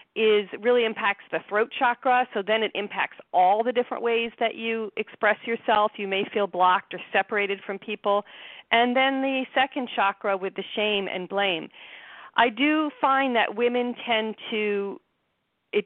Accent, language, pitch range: American, English, 195-235 Hz